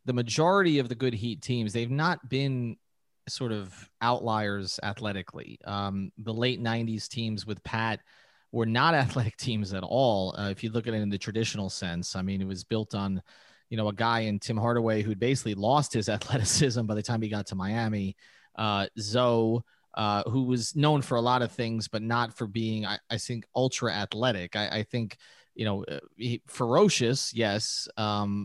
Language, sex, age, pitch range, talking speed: English, male, 30-49, 105-125 Hz, 190 wpm